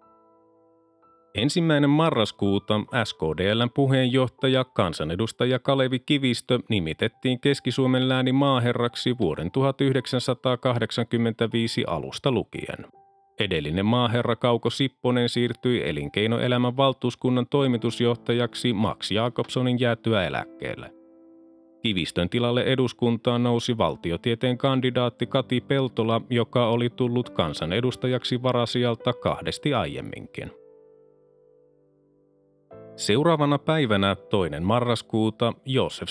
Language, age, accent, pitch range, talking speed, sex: Finnish, 30-49, native, 115-135 Hz, 80 wpm, male